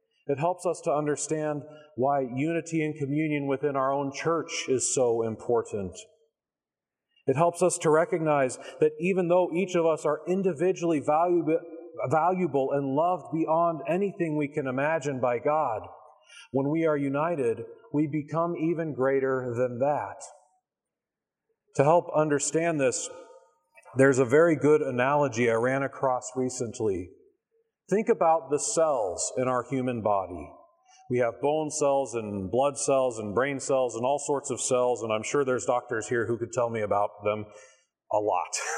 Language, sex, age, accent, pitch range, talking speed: English, male, 40-59, American, 130-180 Hz, 155 wpm